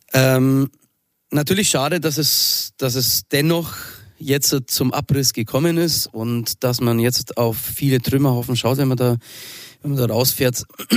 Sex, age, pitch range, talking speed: male, 30-49, 110-135 Hz, 155 wpm